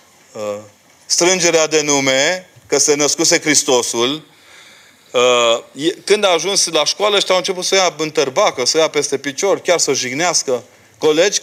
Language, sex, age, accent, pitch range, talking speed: Romanian, male, 30-49, native, 135-175 Hz, 145 wpm